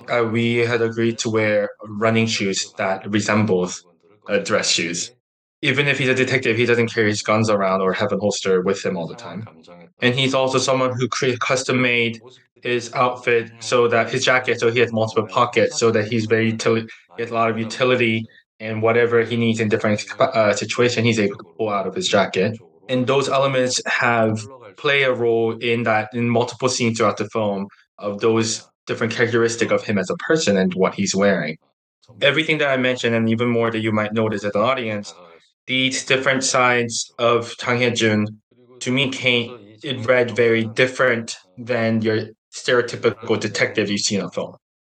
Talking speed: 190 wpm